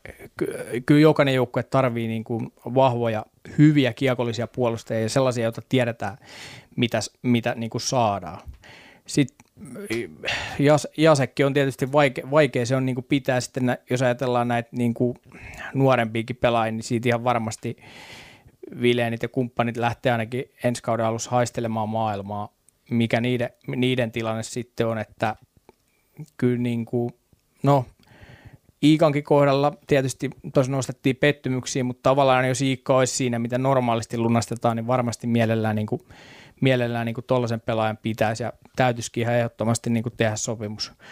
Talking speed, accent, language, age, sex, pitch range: 125 wpm, native, Finnish, 20-39, male, 115-130 Hz